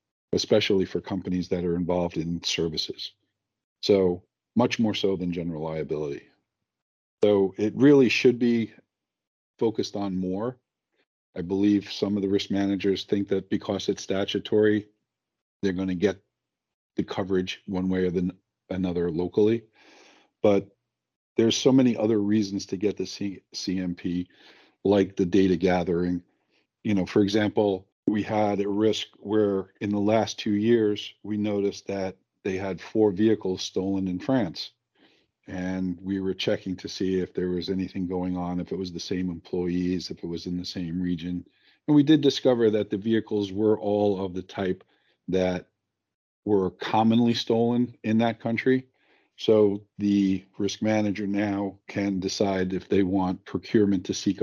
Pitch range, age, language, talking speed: 95-105 Hz, 50-69, English, 160 wpm